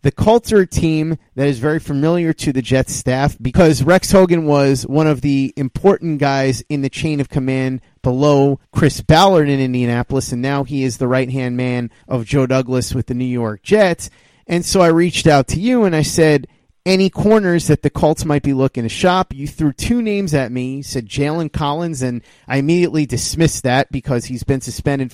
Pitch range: 130-165 Hz